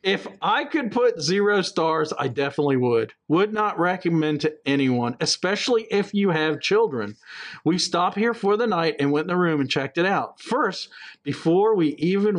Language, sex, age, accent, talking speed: English, male, 50-69, American, 185 wpm